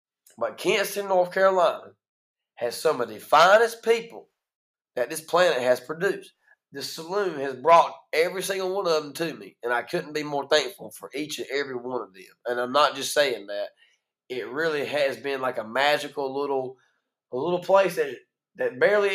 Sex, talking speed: male, 185 wpm